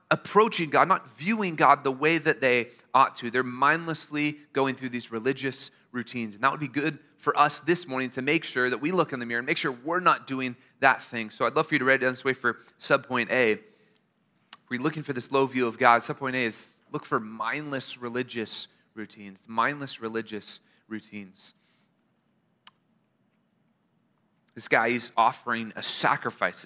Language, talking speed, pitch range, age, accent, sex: English, 185 wpm, 125-170 Hz, 30-49, American, male